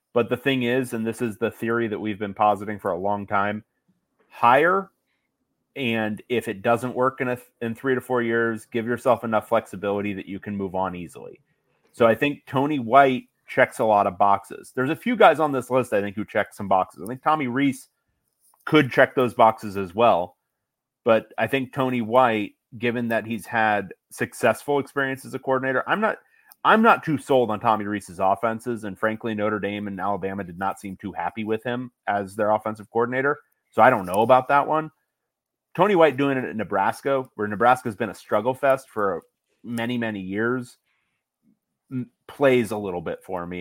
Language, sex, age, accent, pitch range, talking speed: English, male, 30-49, American, 105-125 Hz, 195 wpm